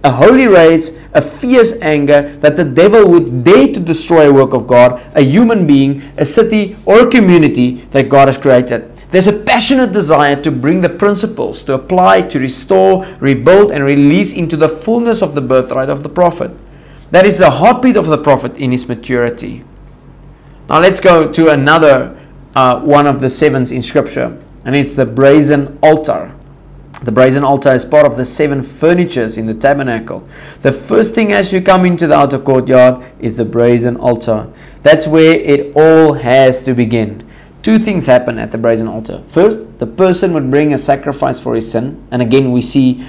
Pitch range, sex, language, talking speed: 125-160 Hz, male, English, 185 wpm